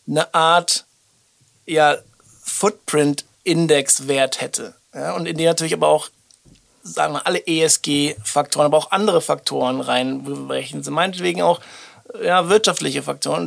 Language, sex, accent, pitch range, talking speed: German, male, German, 140-170 Hz, 115 wpm